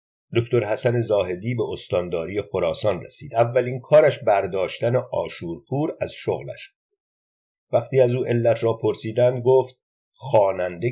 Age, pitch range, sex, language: 50-69, 105-135 Hz, male, Persian